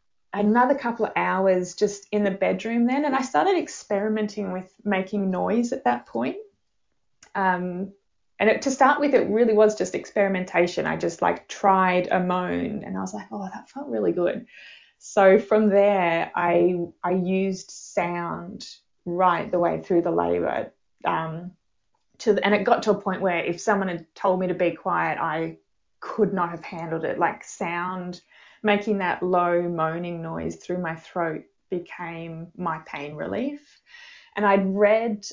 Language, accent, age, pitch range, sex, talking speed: English, Australian, 20-39, 175-205 Hz, female, 170 wpm